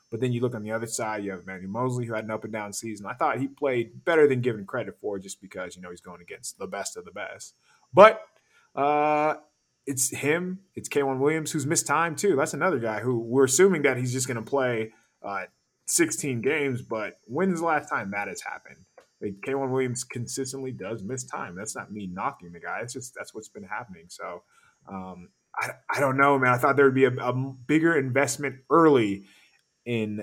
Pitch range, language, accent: 100-140 Hz, English, American